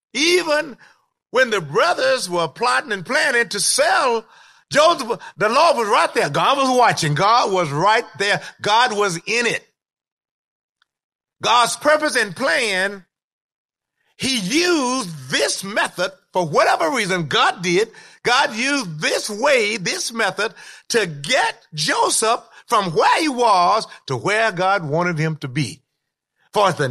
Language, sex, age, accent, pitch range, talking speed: English, male, 50-69, American, 155-240 Hz, 140 wpm